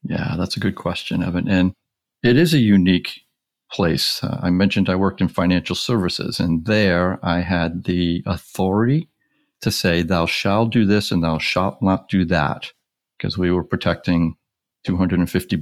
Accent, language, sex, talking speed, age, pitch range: American, English, male, 165 wpm, 50-69, 80-95 Hz